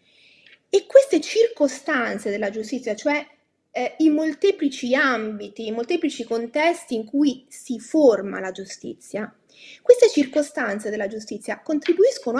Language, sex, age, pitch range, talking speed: Italian, female, 30-49, 220-305 Hz, 115 wpm